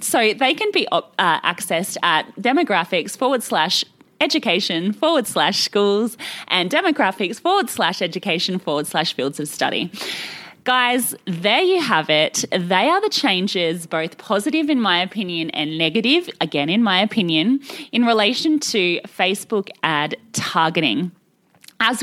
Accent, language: Australian, English